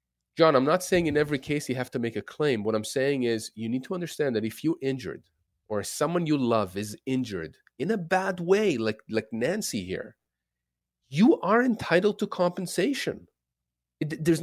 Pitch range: 115-155 Hz